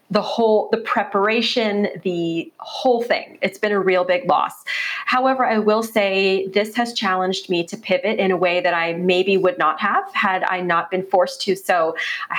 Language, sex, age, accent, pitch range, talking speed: English, female, 30-49, American, 180-210 Hz, 195 wpm